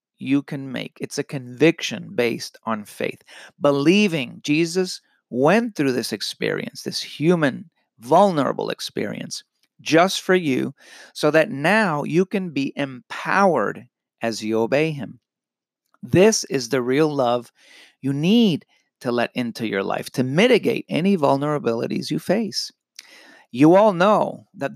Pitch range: 125-170 Hz